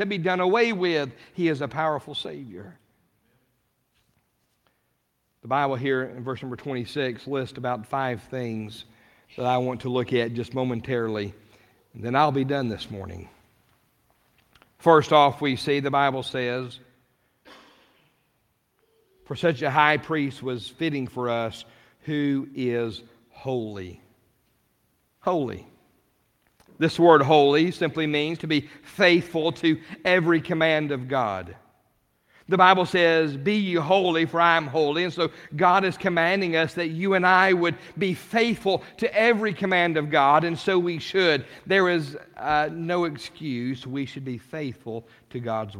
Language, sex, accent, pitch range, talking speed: English, male, American, 120-165 Hz, 145 wpm